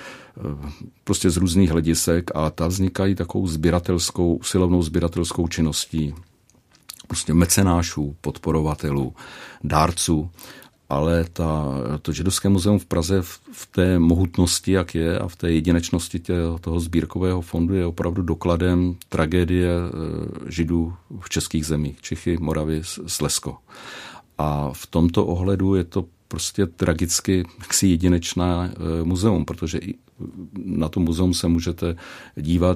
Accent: native